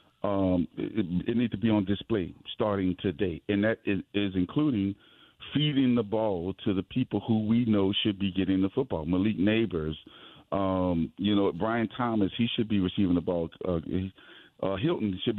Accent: American